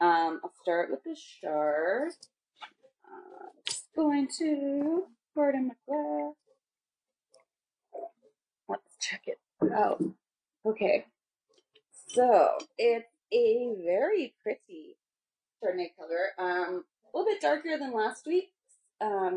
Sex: female